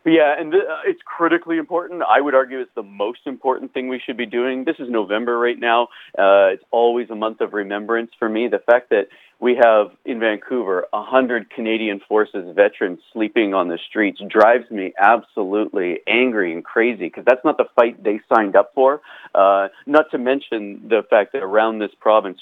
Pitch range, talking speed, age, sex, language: 110-155 Hz, 195 wpm, 40-59, male, English